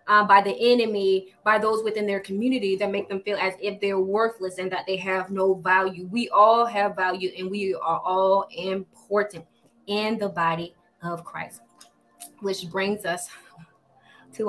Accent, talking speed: American, 170 wpm